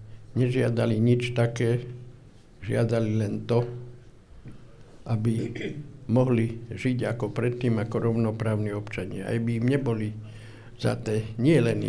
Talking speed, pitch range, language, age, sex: 100 wpm, 110-125 Hz, Slovak, 60-79, male